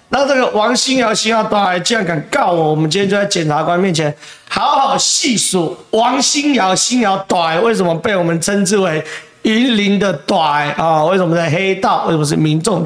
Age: 40-59